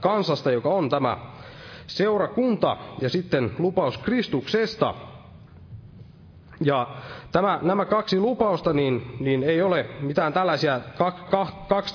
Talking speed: 95 wpm